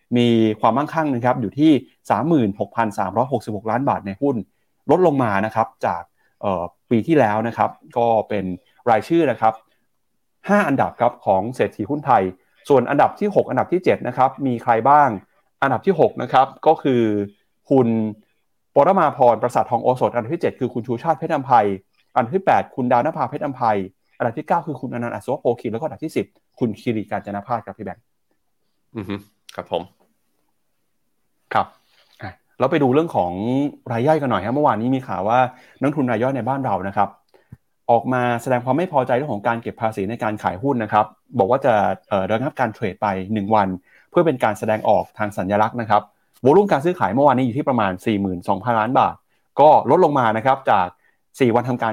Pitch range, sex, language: 105-130 Hz, male, Thai